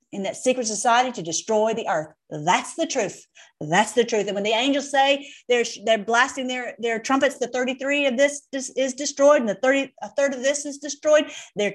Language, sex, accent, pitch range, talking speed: English, female, American, 215-285 Hz, 220 wpm